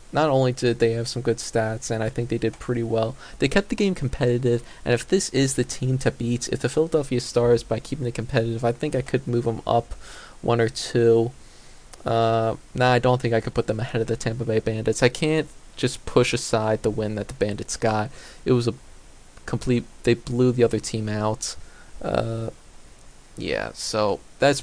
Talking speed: 210 wpm